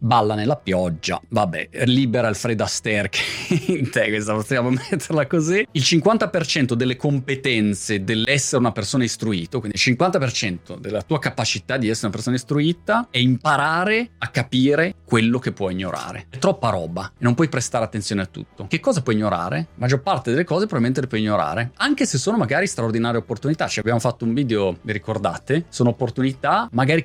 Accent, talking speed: native, 180 wpm